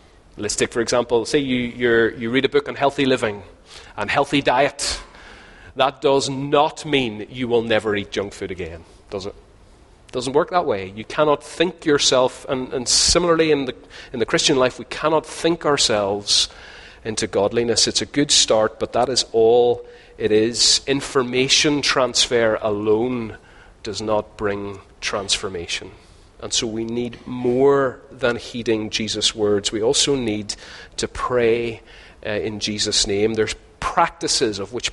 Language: English